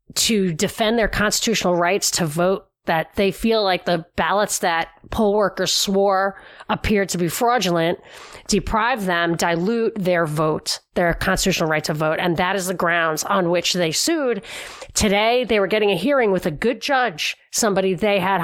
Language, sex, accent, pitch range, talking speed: English, female, American, 175-210 Hz, 170 wpm